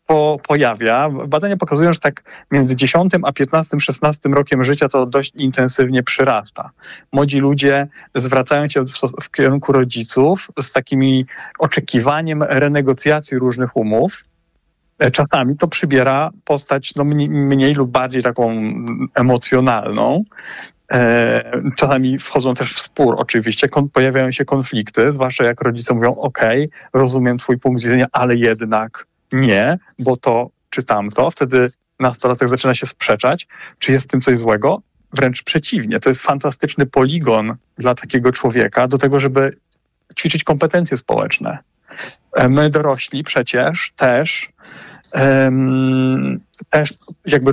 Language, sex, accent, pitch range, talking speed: Polish, male, native, 125-150 Hz, 130 wpm